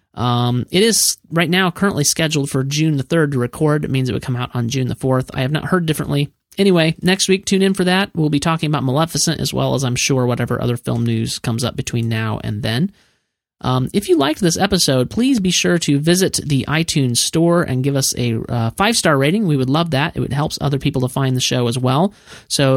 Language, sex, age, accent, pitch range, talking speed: English, male, 30-49, American, 130-165 Hz, 240 wpm